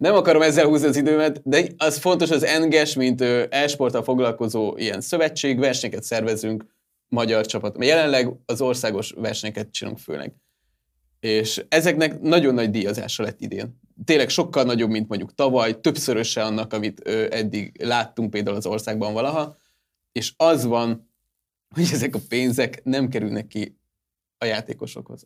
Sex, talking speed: male, 150 wpm